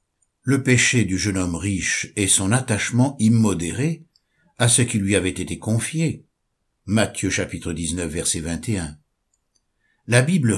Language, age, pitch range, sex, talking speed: French, 60-79, 95-120 Hz, male, 135 wpm